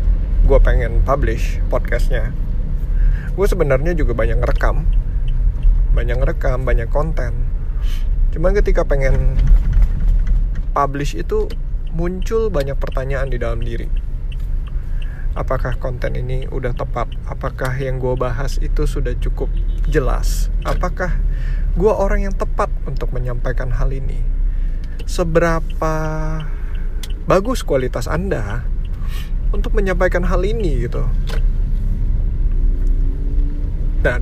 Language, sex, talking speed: Indonesian, male, 100 wpm